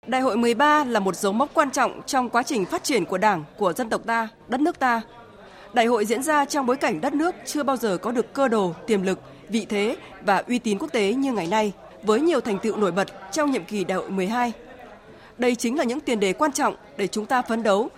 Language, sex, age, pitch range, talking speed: Vietnamese, female, 20-39, 205-265 Hz, 255 wpm